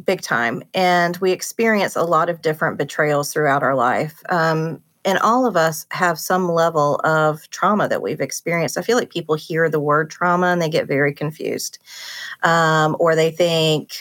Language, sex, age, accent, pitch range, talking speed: English, female, 30-49, American, 155-180 Hz, 185 wpm